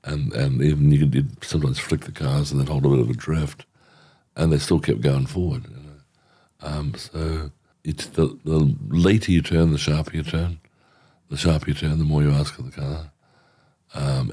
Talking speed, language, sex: 205 wpm, English, male